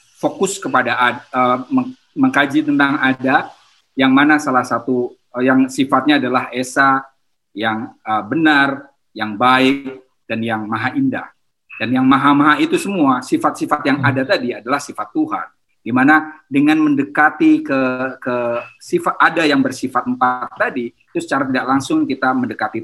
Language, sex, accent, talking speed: Indonesian, male, native, 145 wpm